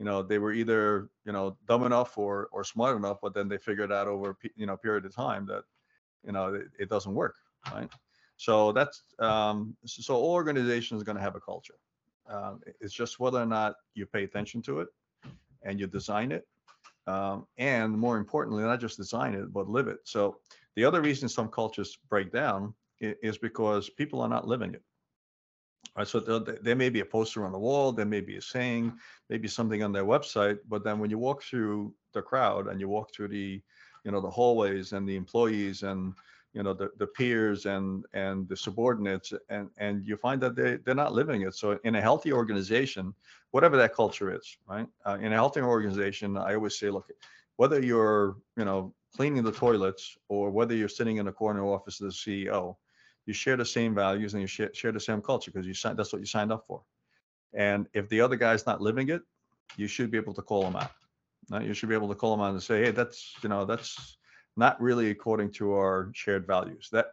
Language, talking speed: English, 220 wpm